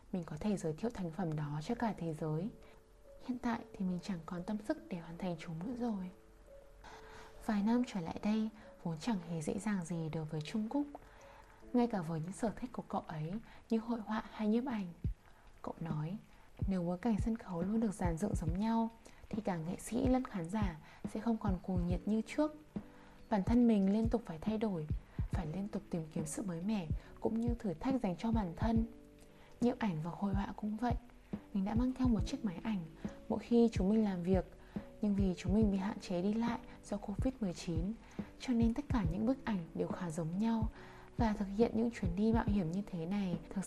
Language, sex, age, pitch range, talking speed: Vietnamese, female, 20-39, 175-230 Hz, 225 wpm